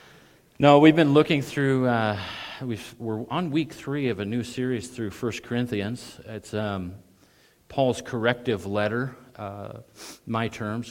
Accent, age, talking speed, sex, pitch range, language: American, 40-59, 145 wpm, male, 100-125 Hz, English